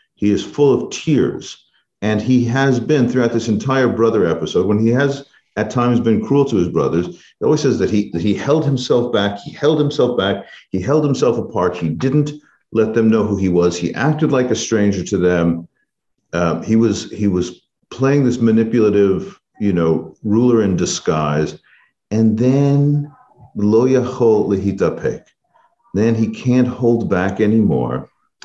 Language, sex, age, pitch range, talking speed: English, male, 50-69, 105-140 Hz, 160 wpm